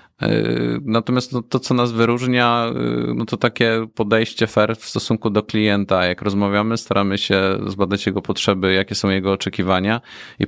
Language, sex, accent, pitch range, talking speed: Polish, male, native, 100-110 Hz, 155 wpm